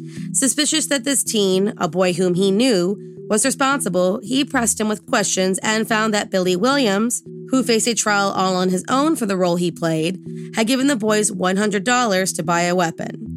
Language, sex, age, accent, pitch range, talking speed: English, female, 20-39, American, 180-220 Hz, 195 wpm